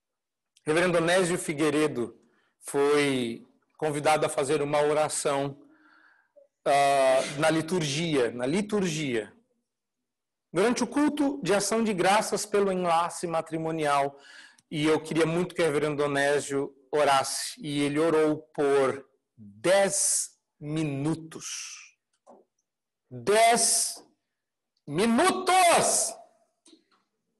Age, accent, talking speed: 50-69, Brazilian, 90 wpm